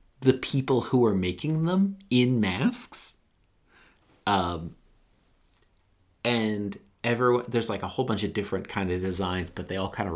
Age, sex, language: 30-49, male, English